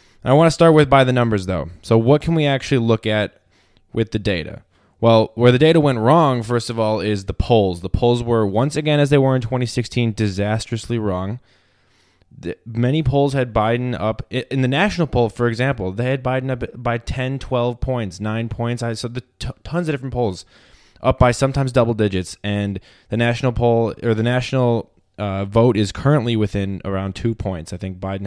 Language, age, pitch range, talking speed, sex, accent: English, 20-39, 100-130 Hz, 195 wpm, male, American